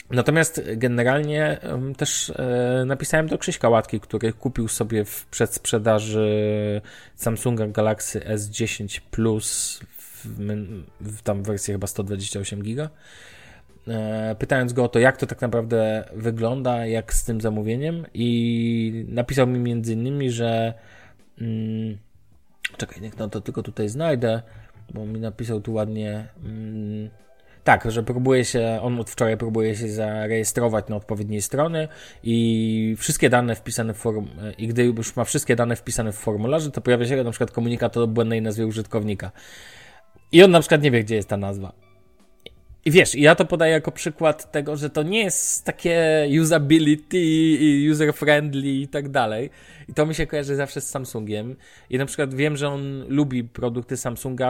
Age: 20-39